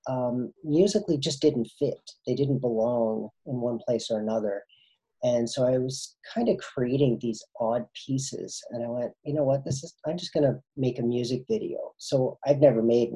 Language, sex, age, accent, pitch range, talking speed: English, male, 40-59, American, 115-140 Hz, 190 wpm